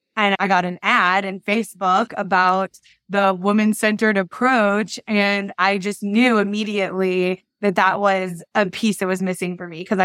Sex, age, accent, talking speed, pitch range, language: female, 20-39, American, 160 wpm, 180-205 Hz, English